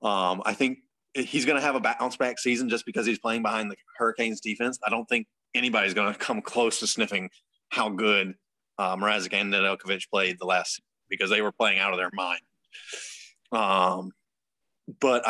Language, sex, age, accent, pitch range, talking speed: English, male, 30-49, American, 105-125 Hz, 190 wpm